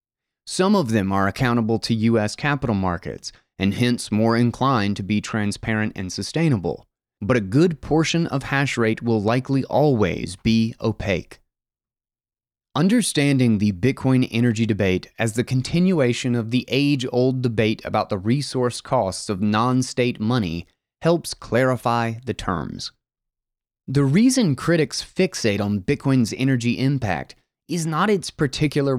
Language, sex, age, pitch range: English, male, 30-49, 110-140 Hz